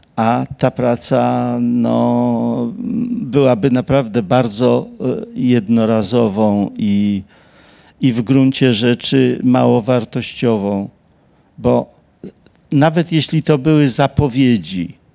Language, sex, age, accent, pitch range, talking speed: Polish, male, 50-69, native, 110-140 Hz, 85 wpm